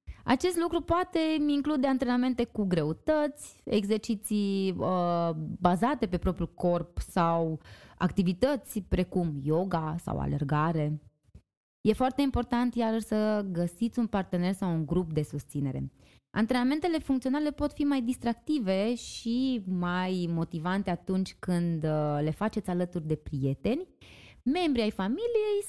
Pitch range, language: 170-260 Hz, Romanian